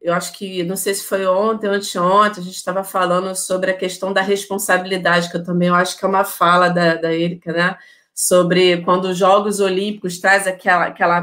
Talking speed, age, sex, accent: 215 wpm, 30-49, female, Brazilian